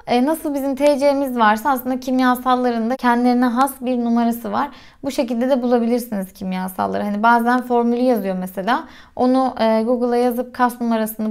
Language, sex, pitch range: Turkish, female, 225-260 Hz